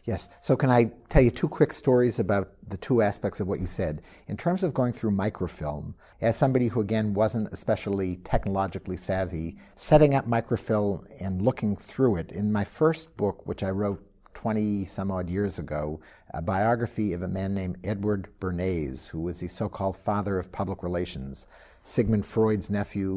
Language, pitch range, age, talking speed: English, 90-110 Hz, 50-69, 175 wpm